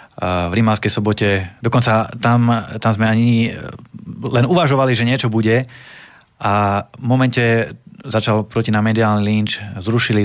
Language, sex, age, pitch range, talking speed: Slovak, male, 20-39, 100-115 Hz, 130 wpm